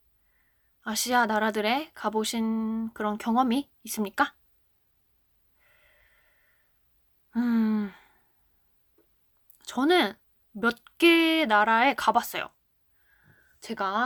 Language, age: Korean, 20-39